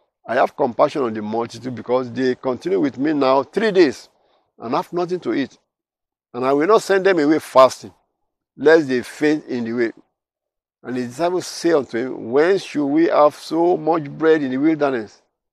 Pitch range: 125-180 Hz